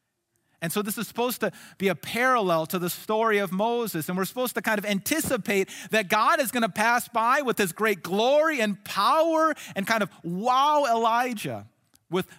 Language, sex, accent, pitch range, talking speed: English, male, American, 155-225 Hz, 195 wpm